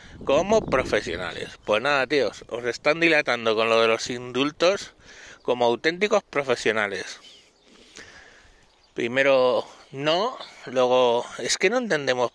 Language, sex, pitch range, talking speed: Spanish, male, 125-165 Hz, 110 wpm